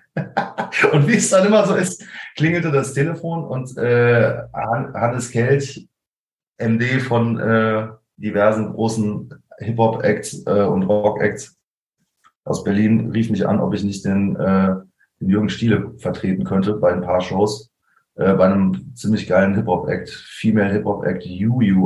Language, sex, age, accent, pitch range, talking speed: German, male, 30-49, German, 95-120 Hz, 130 wpm